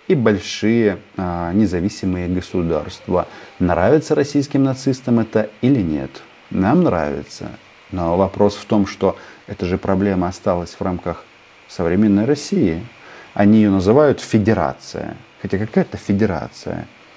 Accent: native